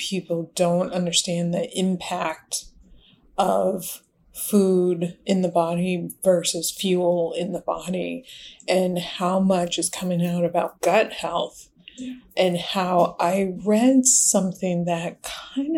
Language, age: English, 30-49